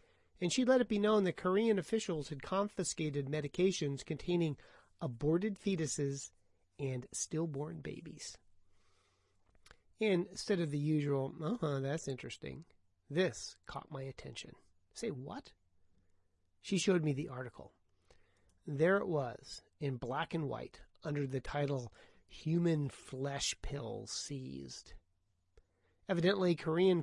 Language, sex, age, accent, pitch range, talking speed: English, male, 30-49, American, 135-180 Hz, 120 wpm